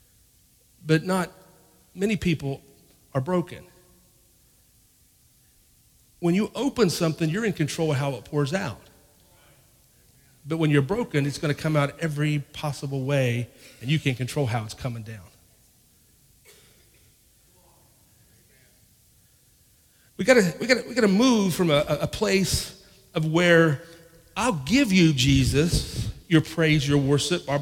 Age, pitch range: 40-59, 140-185 Hz